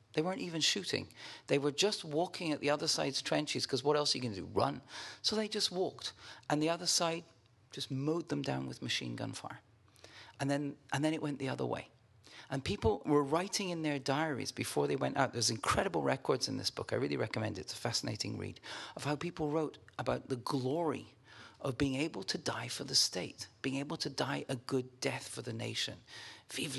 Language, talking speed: English, 220 wpm